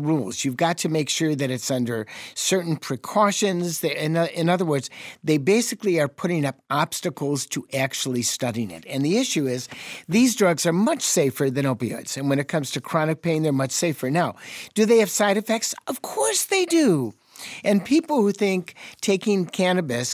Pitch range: 130-175 Hz